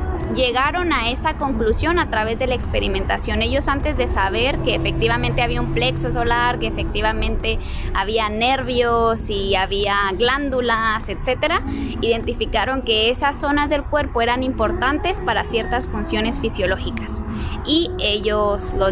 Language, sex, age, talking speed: Spanish, female, 20-39, 135 wpm